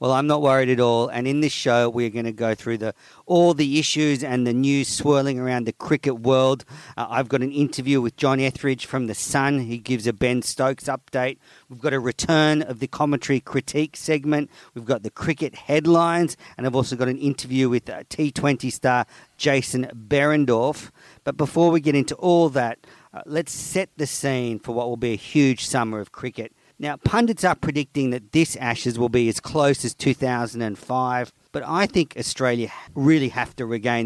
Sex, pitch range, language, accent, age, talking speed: male, 125-155 Hz, English, Australian, 50-69, 195 wpm